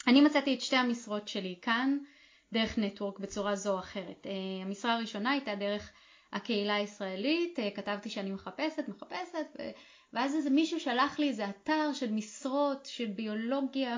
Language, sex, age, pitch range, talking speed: Hebrew, female, 20-39, 205-275 Hz, 140 wpm